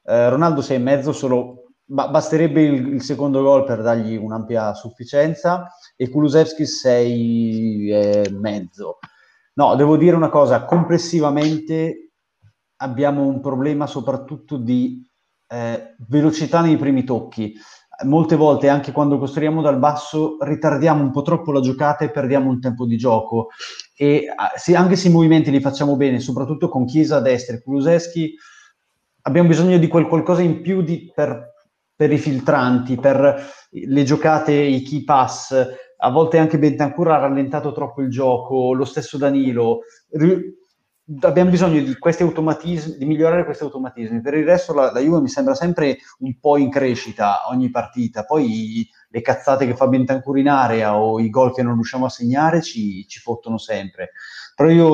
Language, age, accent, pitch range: Italian, 30-49, native, 125-155 Hz